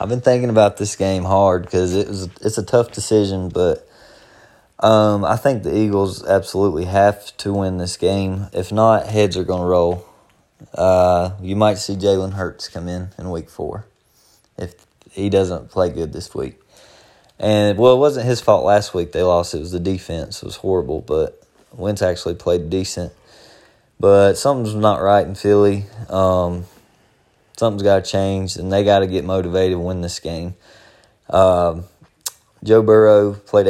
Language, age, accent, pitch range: English, 20-39, American, 95-110 Hz